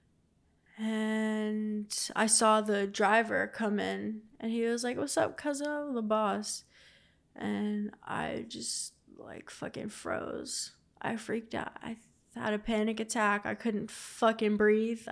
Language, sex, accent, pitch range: English, female, American, 205-225 Hz